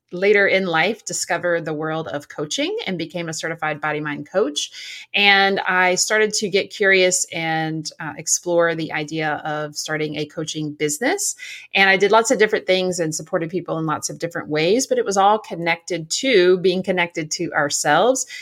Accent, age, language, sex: American, 30-49, English, female